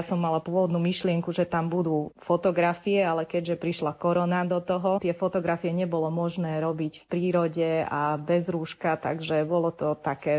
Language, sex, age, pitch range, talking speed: Slovak, female, 20-39, 160-180 Hz, 170 wpm